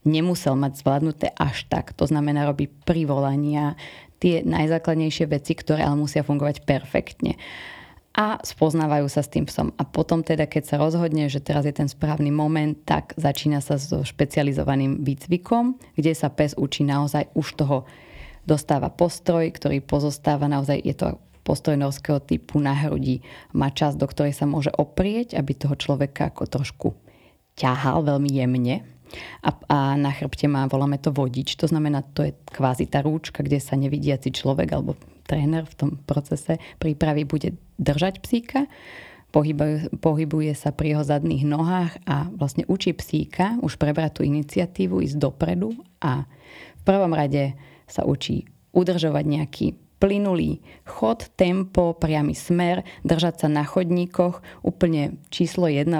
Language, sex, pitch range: Slovak, female, 140-160 Hz